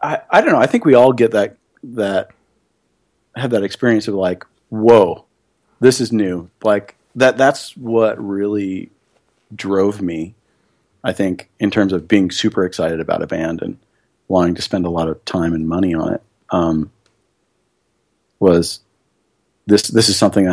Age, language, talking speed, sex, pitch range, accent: 40-59, English, 165 wpm, male, 95-115 Hz, American